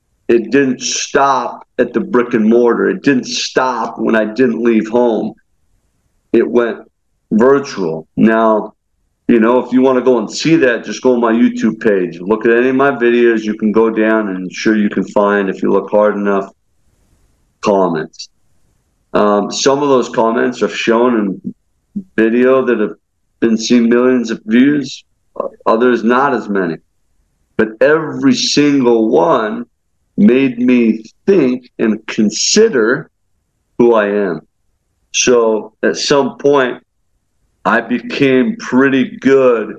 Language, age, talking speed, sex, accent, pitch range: English, 50-69, 145 wpm, male, American, 110-140 Hz